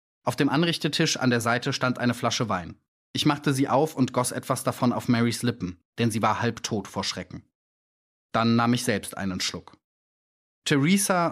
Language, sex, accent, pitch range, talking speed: German, male, German, 110-140 Hz, 180 wpm